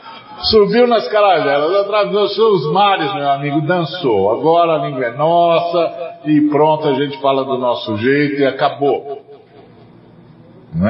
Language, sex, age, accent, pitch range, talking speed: Portuguese, male, 50-69, Brazilian, 95-155 Hz, 140 wpm